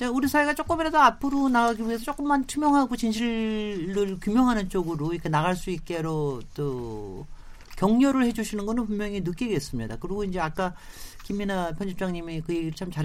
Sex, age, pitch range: male, 40-59, 155-250 Hz